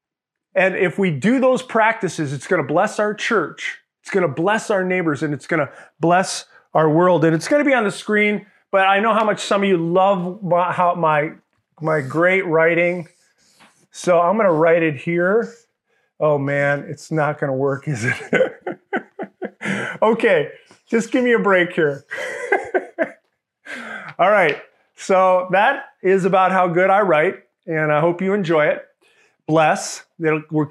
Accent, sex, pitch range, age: American, male, 165-220 Hz, 30-49